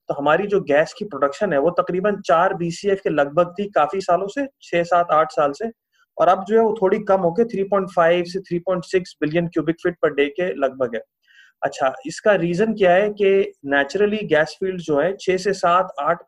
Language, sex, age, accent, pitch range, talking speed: English, male, 30-49, Indian, 150-185 Hz, 200 wpm